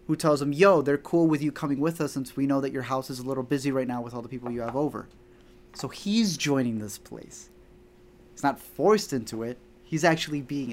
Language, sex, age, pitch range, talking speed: English, male, 20-39, 120-155 Hz, 240 wpm